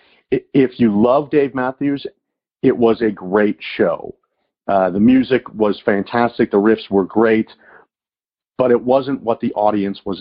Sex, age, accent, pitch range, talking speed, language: male, 50-69, American, 100-130 Hz, 155 wpm, English